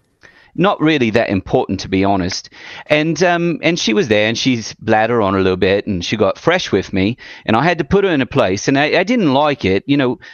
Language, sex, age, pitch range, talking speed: English, male, 40-59, 130-185 Hz, 250 wpm